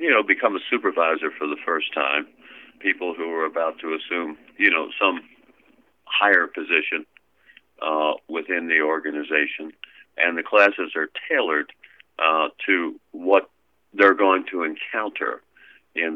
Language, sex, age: English, male, 50-69